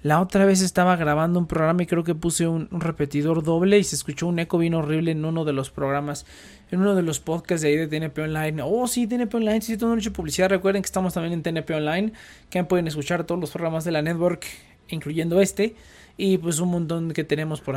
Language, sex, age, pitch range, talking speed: Spanish, male, 20-39, 150-190 Hz, 235 wpm